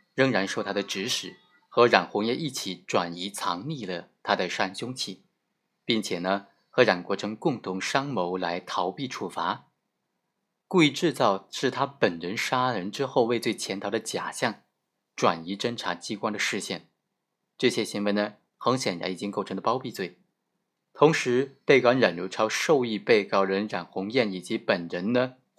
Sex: male